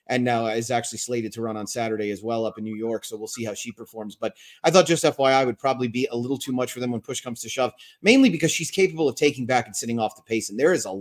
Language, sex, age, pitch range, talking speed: English, male, 30-49, 115-140 Hz, 305 wpm